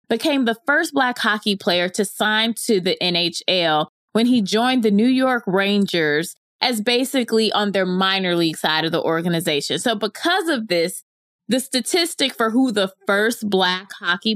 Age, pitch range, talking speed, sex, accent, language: 20-39, 180-240 Hz, 165 wpm, female, American, English